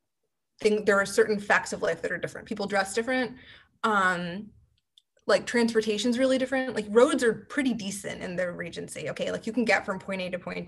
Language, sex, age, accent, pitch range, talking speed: English, female, 20-39, American, 185-230 Hz, 200 wpm